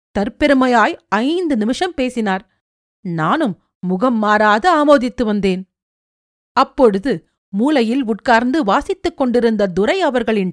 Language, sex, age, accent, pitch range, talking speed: Tamil, female, 40-59, native, 200-285 Hz, 90 wpm